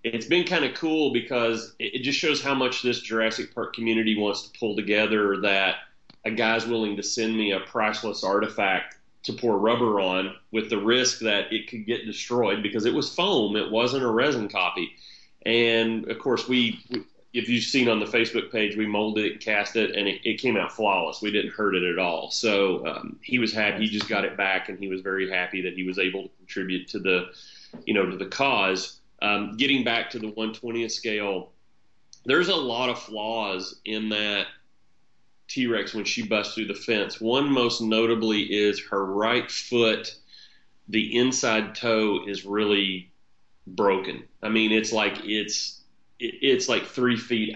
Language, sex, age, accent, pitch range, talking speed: English, male, 30-49, American, 100-115 Hz, 185 wpm